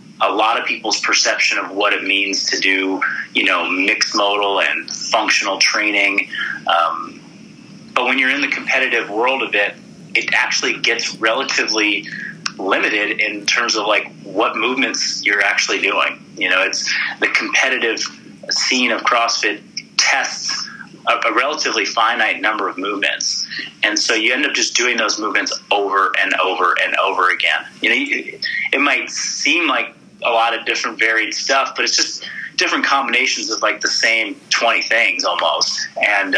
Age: 30-49